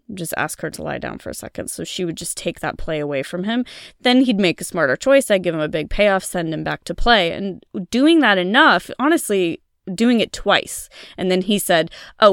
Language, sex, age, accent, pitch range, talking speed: English, female, 20-39, American, 165-215 Hz, 240 wpm